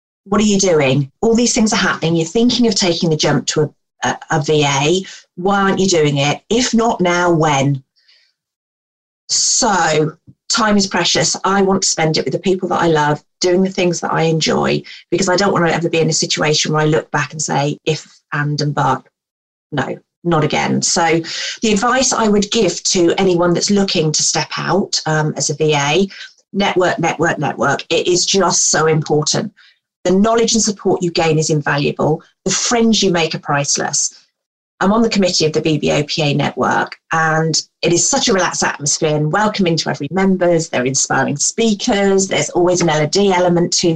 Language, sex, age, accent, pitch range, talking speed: English, female, 40-59, British, 155-200 Hz, 190 wpm